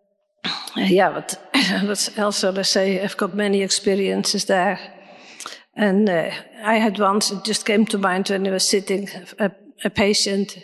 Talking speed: 165 wpm